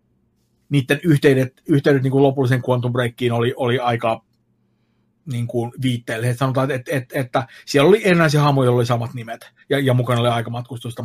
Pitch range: 120-135 Hz